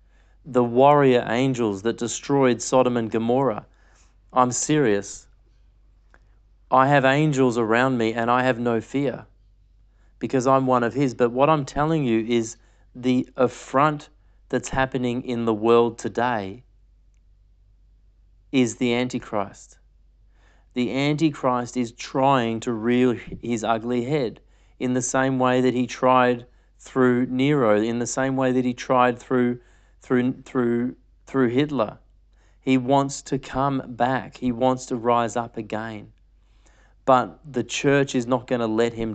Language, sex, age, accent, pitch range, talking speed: English, male, 40-59, Australian, 110-130 Hz, 140 wpm